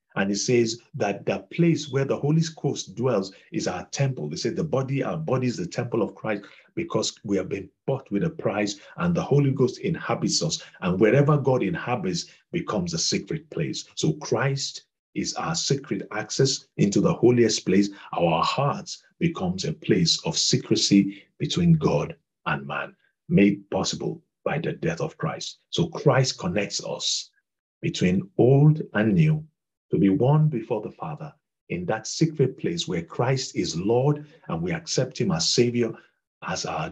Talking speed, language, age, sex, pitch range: 170 wpm, English, 50-69, male, 120-165 Hz